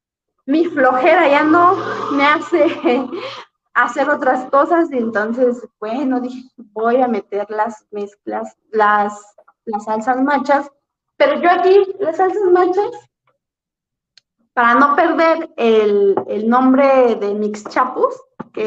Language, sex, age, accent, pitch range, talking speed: Spanish, female, 20-39, Mexican, 230-330 Hz, 120 wpm